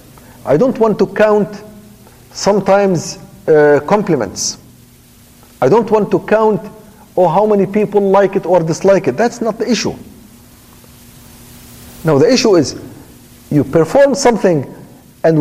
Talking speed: 130 wpm